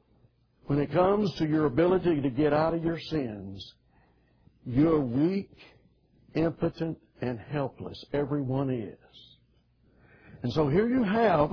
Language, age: English, 60-79